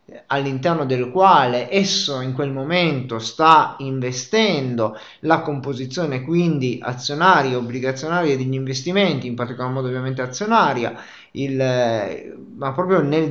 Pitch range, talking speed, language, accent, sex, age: 130-160 Hz, 110 wpm, Italian, native, male, 30-49